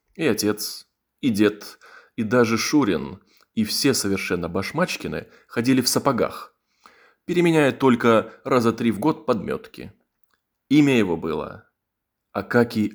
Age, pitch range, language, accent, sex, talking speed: 20-39, 105-130 Hz, Russian, native, male, 115 wpm